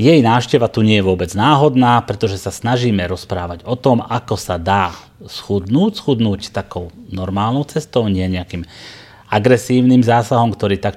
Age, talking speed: 30-49, 150 wpm